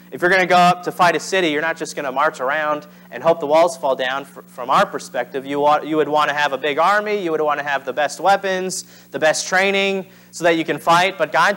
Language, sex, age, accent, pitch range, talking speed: English, male, 30-49, American, 115-165 Hz, 270 wpm